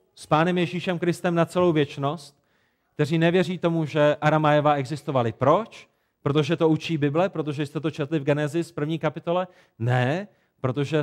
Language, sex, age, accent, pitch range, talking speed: Czech, male, 30-49, native, 140-175 Hz, 150 wpm